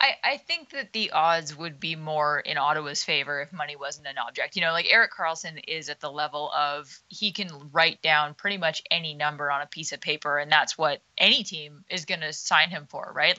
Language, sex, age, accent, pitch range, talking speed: English, female, 20-39, American, 150-180 Hz, 230 wpm